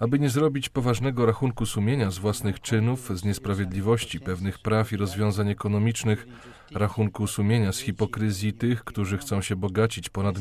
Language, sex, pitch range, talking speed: Polish, male, 100-115 Hz, 150 wpm